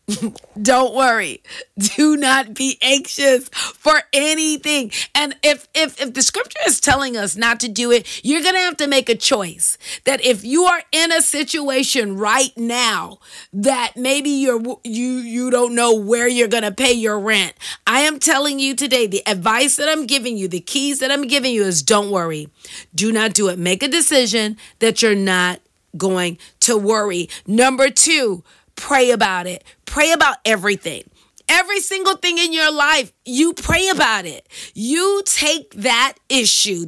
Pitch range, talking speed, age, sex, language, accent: 215-295 Hz, 175 wpm, 40-59, female, English, American